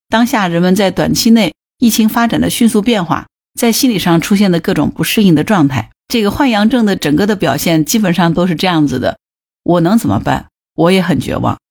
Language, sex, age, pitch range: Chinese, female, 50-69, 155-220 Hz